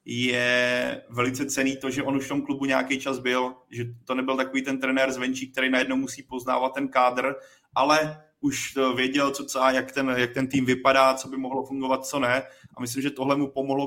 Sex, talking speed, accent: male, 210 wpm, native